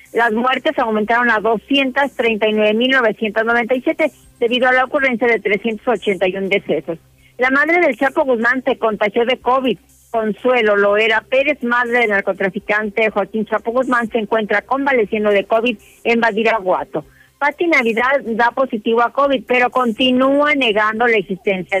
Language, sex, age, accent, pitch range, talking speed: Spanish, female, 40-59, Mexican, 215-255 Hz, 130 wpm